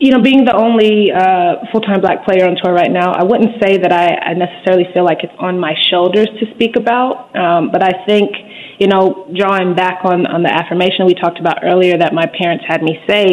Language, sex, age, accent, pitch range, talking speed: English, female, 20-39, American, 170-195 Hz, 230 wpm